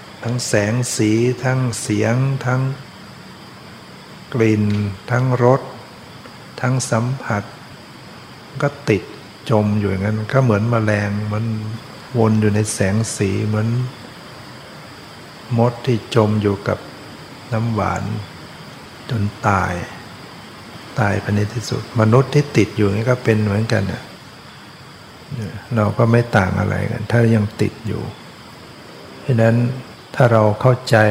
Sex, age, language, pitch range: male, 60-79, Thai, 105-120 Hz